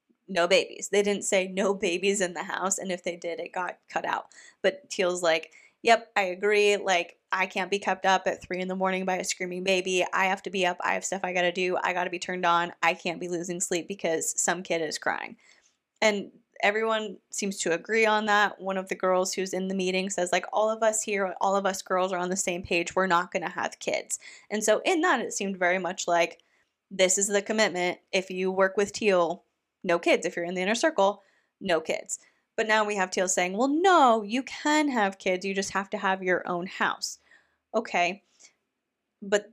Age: 20-39